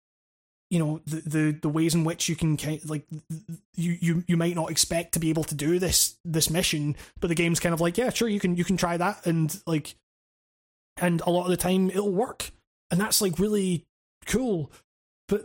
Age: 20-39